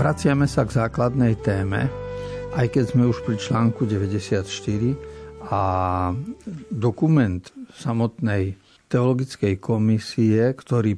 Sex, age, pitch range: male, 50-69, 105-130 Hz